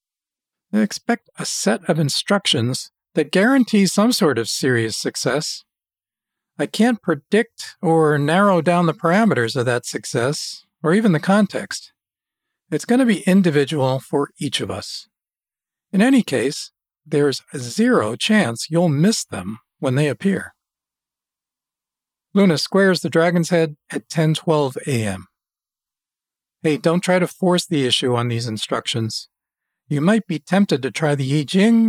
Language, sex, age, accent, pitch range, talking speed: English, male, 50-69, American, 140-195 Hz, 135 wpm